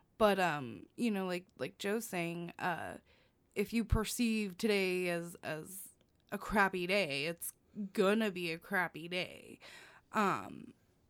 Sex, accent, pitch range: female, American, 190-240 Hz